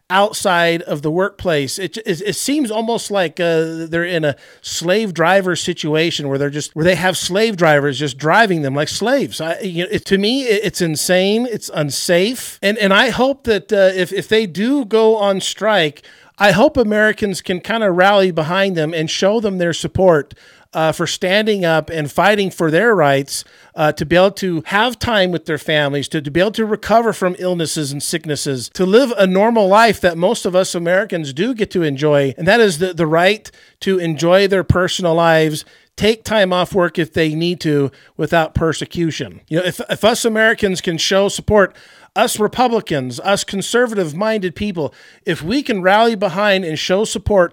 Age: 50-69